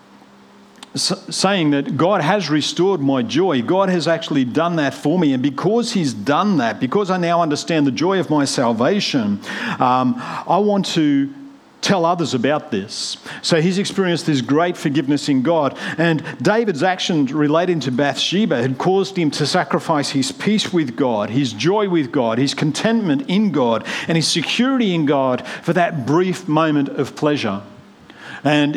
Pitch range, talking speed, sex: 135-180 Hz, 165 wpm, male